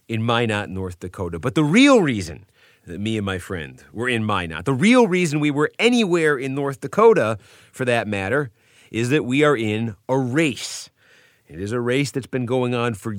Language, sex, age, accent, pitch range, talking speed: English, male, 30-49, American, 105-145 Hz, 200 wpm